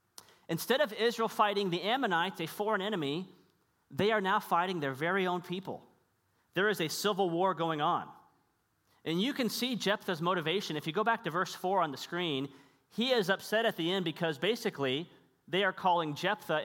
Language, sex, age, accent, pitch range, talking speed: English, male, 40-59, American, 155-215 Hz, 185 wpm